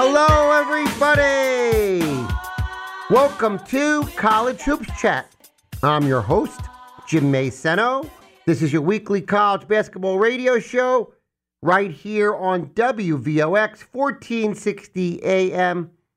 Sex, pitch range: male, 160-215 Hz